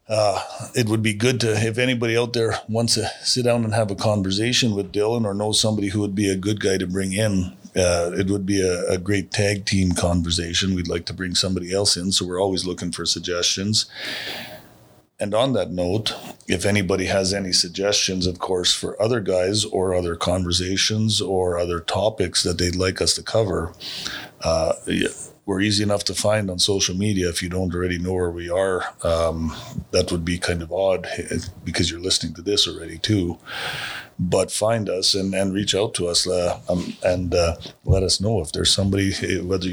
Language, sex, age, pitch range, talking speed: English, male, 40-59, 90-105 Hz, 200 wpm